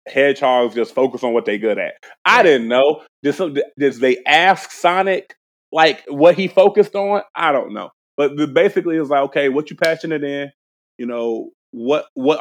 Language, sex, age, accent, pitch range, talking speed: English, male, 30-49, American, 120-150 Hz, 190 wpm